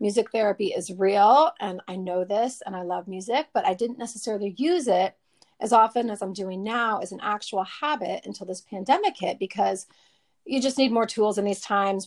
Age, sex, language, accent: 30-49, female, English, American